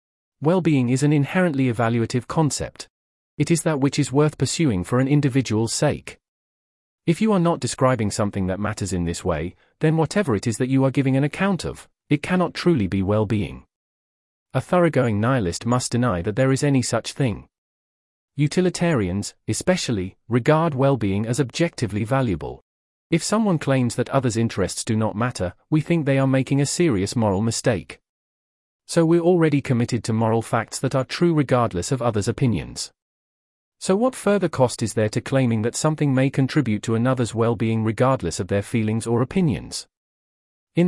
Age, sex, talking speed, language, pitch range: 40-59, male, 175 wpm, English, 105-145 Hz